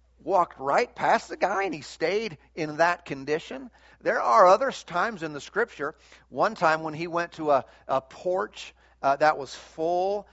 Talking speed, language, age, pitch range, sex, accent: 180 wpm, English, 40-59, 150-200 Hz, male, American